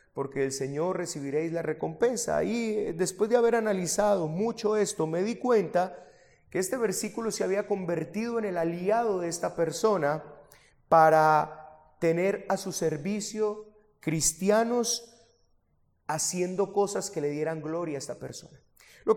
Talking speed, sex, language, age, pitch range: 140 wpm, male, Spanish, 30-49, 165-225 Hz